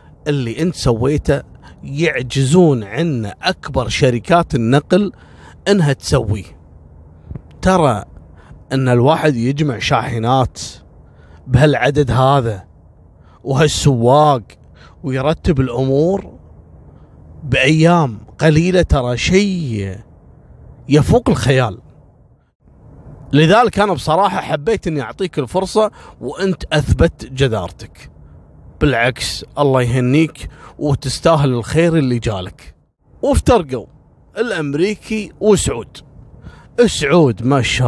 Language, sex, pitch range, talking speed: Arabic, male, 115-155 Hz, 80 wpm